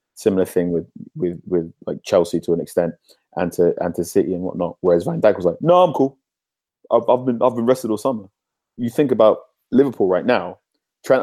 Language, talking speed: English, 215 wpm